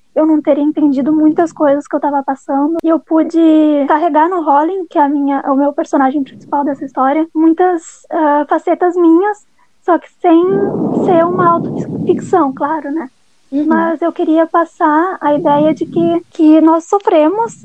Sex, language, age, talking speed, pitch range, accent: female, Portuguese, 10-29, 165 wpm, 290-330 Hz, Brazilian